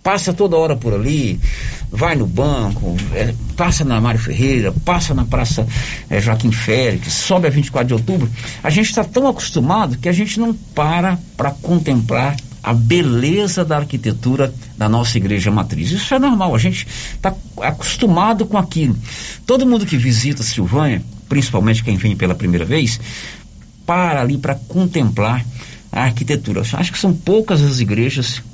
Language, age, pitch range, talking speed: Portuguese, 60-79, 110-155 Hz, 160 wpm